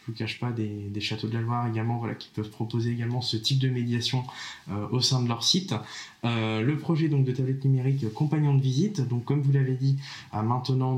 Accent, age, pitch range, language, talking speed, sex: French, 20-39, 115-135 Hz, French, 245 wpm, male